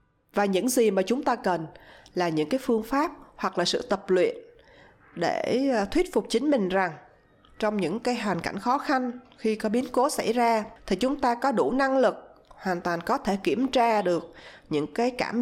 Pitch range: 185-255 Hz